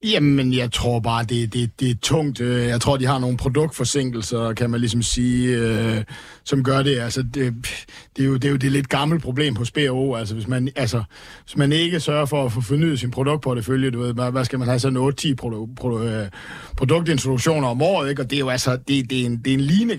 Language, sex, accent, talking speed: Danish, male, native, 240 wpm